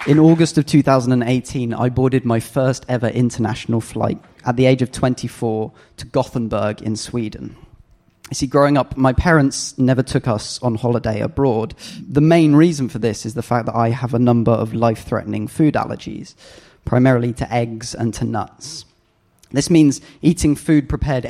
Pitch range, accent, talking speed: 115-135 Hz, British, 170 wpm